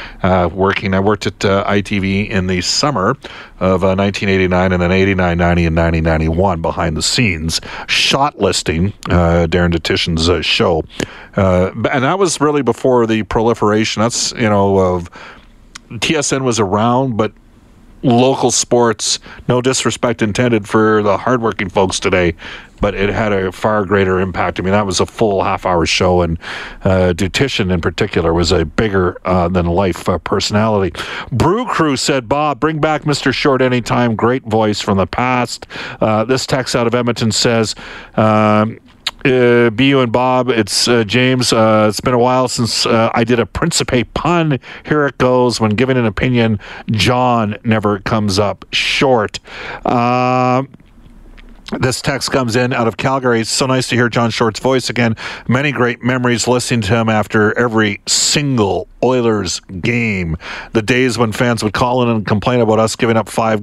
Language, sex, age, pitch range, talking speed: English, male, 50-69, 100-125 Hz, 165 wpm